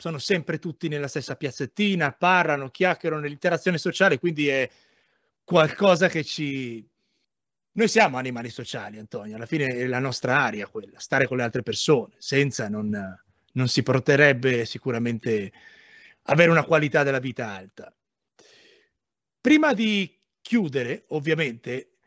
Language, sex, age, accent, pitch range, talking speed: Italian, male, 30-49, native, 135-190 Hz, 130 wpm